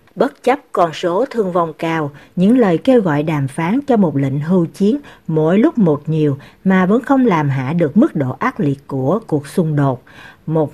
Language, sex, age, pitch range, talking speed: Vietnamese, female, 60-79, 155-215 Hz, 205 wpm